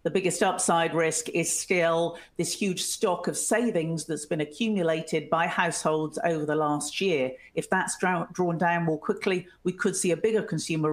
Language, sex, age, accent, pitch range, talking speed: English, female, 50-69, British, 160-190 Hz, 180 wpm